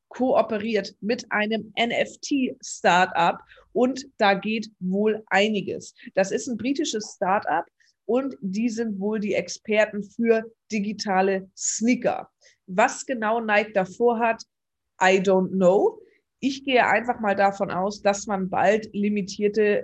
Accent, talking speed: German, 125 wpm